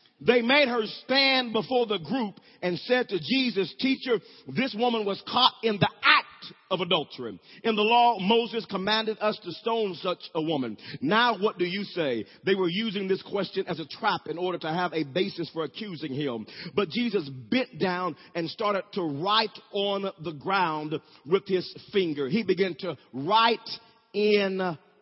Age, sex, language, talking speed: 40-59, male, English, 175 wpm